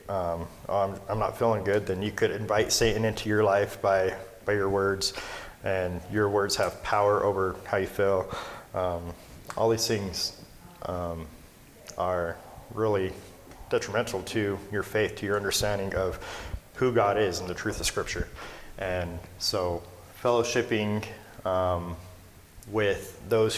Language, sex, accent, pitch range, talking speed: English, male, American, 95-115 Hz, 145 wpm